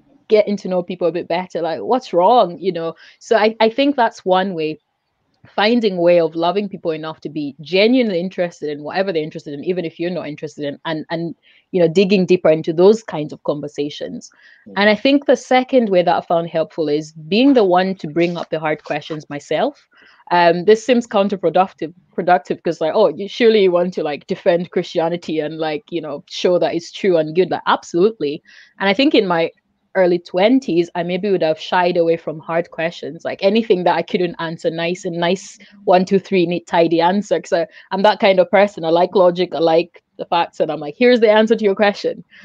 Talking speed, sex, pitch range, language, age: 215 wpm, female, 165-200 Hz, English, 20-39